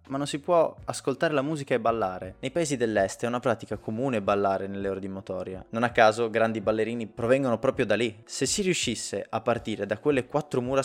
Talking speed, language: 215 wpm, Italian